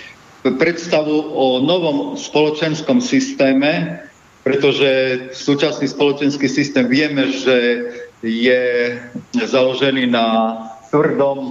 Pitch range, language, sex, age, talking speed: 125-140 Hz, Slovak, male, 50-69, 80 wpm